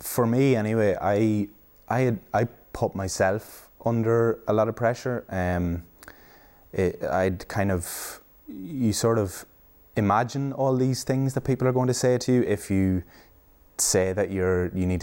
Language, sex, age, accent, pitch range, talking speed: English, male, 20-39, Irish, 90-115 Hz, 160 wpm